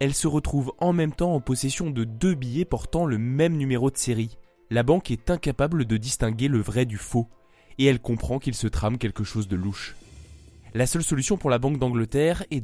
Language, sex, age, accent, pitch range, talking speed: French, male, 20-39, French, 110-140 Hz, 215 wpm